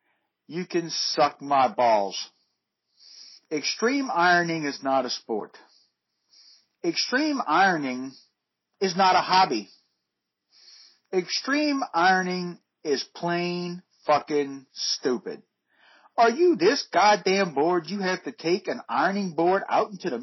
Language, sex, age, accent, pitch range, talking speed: English, male, 50-69, American, 160-265 Hz, 115 wpm